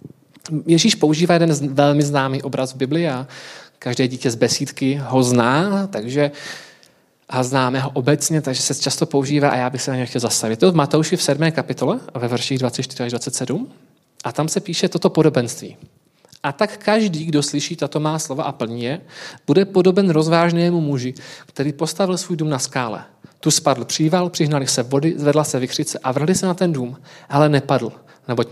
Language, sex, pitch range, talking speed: Czech, male, 135-175 Hz, 185 wpm